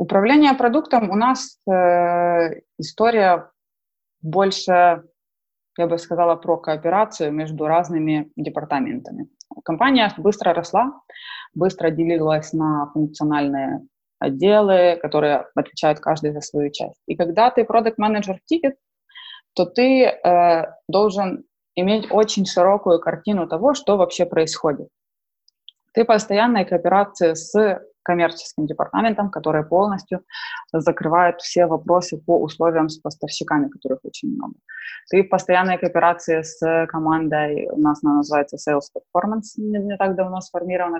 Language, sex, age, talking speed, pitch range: Russian, female, 20-39, 115 wpm, 160-205 Hz